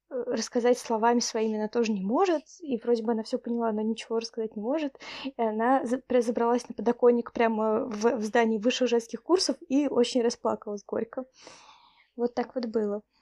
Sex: female